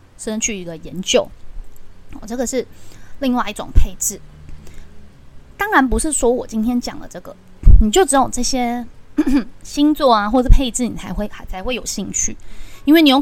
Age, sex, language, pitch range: 20-39, female, Chinese, 180-240 Hz